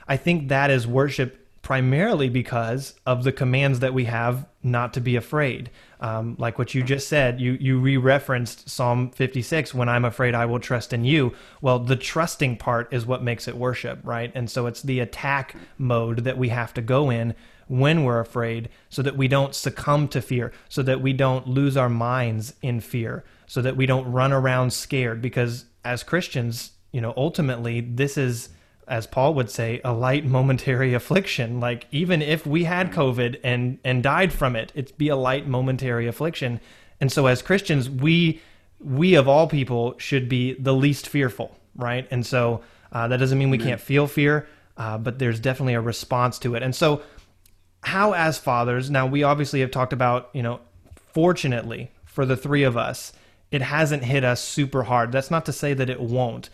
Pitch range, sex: 120-140 Hz, male